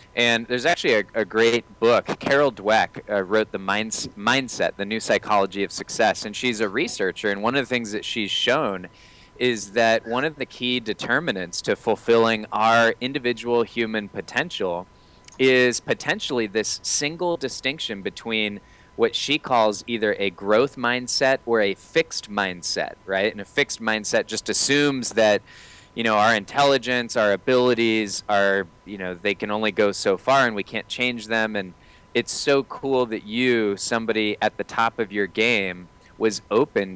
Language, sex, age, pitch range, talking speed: English, male, 20-39, 100-125 Hz, 165 wpm